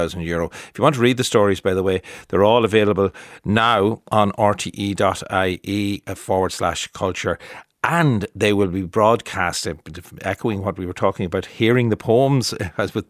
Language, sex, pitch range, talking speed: English, male, 95-125 Hz, 160 wpm